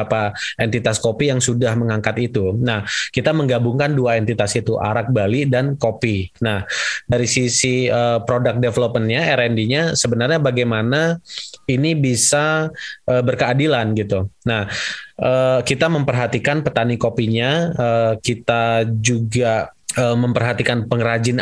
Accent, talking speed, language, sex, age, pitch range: native, 120 wpm, Indonesian, male, 20-39, 115-130 Hz